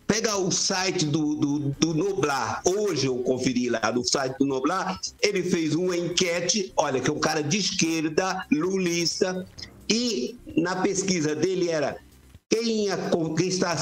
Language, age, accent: Portuguese, 60-79, Brazilian